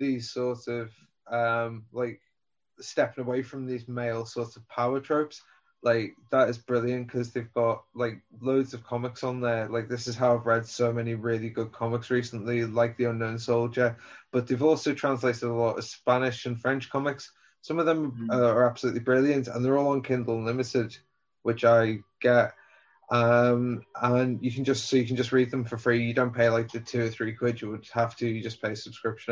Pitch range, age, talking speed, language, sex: 115-130 Hz, 20-39, 205 wpm, English, male